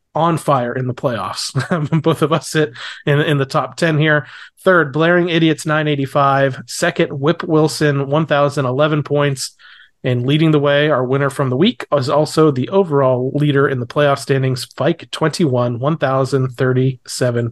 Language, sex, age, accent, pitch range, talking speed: English, male, 30-49, American, 135-160 Hz, 155 wpm